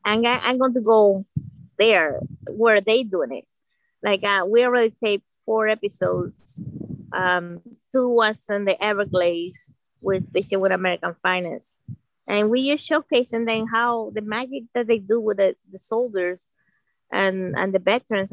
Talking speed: 155 wpm